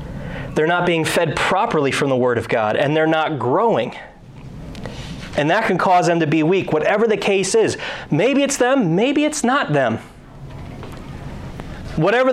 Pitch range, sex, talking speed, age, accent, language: 135-175 Hz, male, 165 wpm, 30-49, American, English